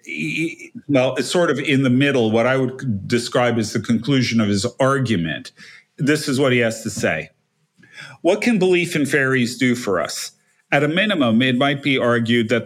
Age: 50-69